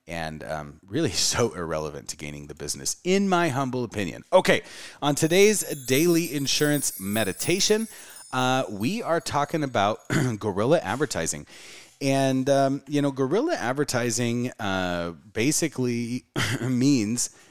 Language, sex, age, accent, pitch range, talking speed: English, male, 30-49, American, 80-135 Hz, 120 wpm